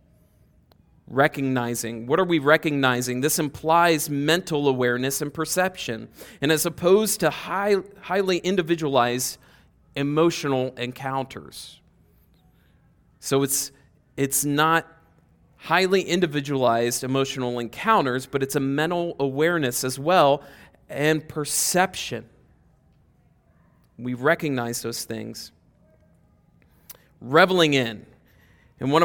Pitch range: 120-155 Hz